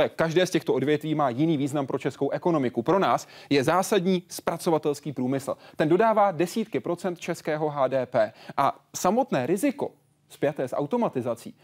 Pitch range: 135-180 Hz